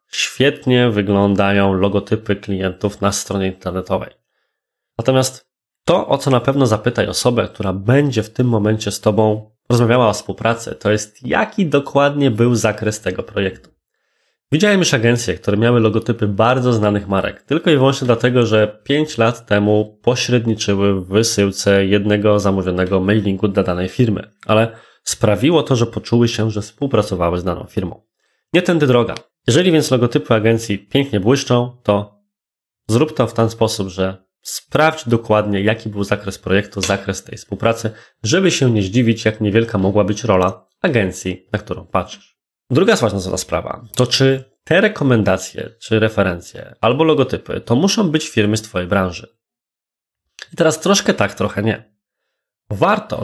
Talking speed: 150 wpm